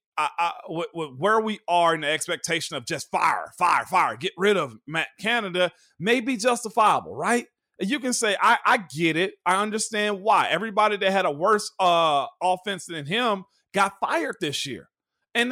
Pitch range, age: 175-220 Hz, 40-59